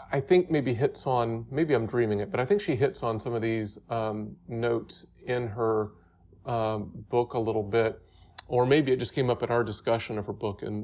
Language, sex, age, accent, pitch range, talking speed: English, male, 40-59, American, 110-130 Hz, 225 wpm